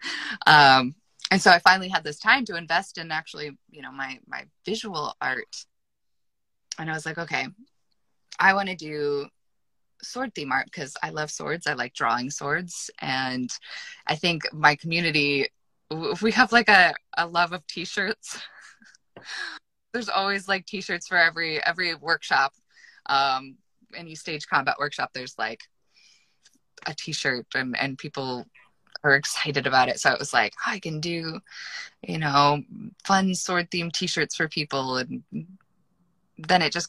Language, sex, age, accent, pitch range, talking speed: English, female, 20-39, American, 150-200 Hz, 150 wpm